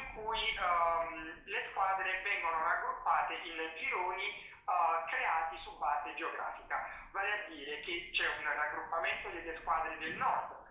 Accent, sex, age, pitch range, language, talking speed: native, male, 20-39, 155-180 Hz, Italian, 120 wpm